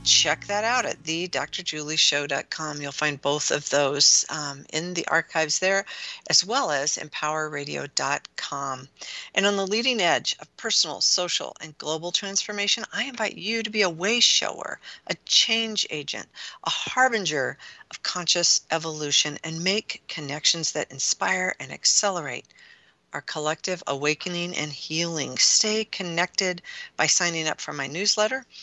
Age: 50-69